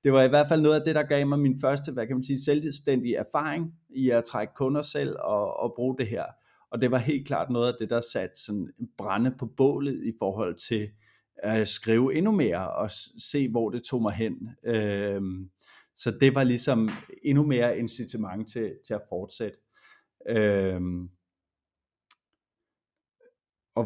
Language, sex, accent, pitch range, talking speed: Danish, male, native, 105-135 Hz, 170 wpm